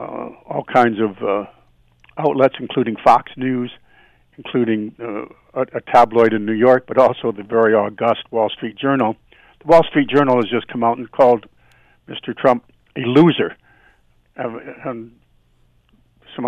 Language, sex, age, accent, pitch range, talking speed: English, male, 60-79, American, 110-135 Hz, 150 wpm